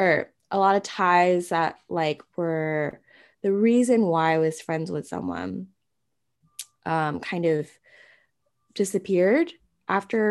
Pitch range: 155-195 Hz